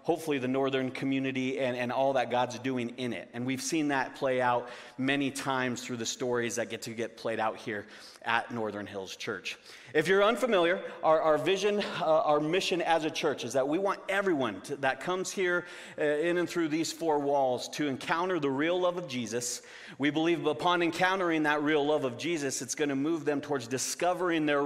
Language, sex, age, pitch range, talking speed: English, male, 40-59, 135-165 Hz, 210 wpm